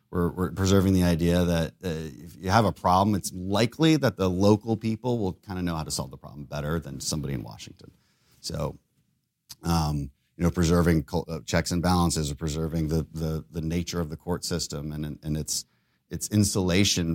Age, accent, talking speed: 30-49, American, 185 wpm